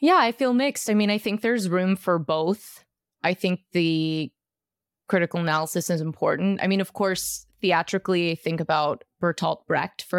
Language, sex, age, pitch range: English, female, 20-39, 165-190 Hz